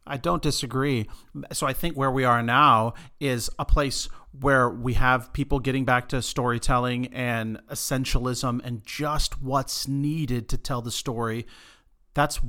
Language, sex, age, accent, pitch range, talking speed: English, male, 40-59, American, 120-140 Hz, 155 wpm